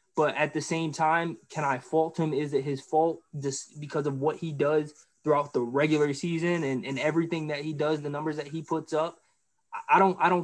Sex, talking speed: male, 225 wpm